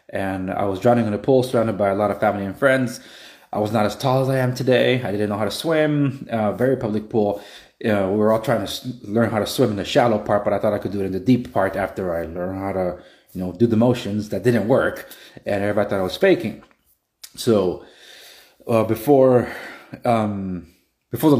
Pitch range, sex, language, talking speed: 95-125 Hz, male, English, 240 wpm